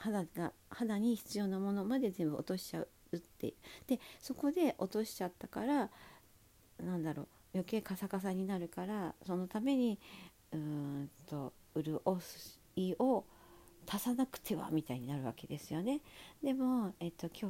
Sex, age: female, 50-69